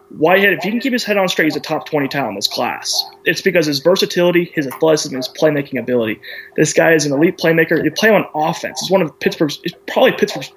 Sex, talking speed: male, 240 wpm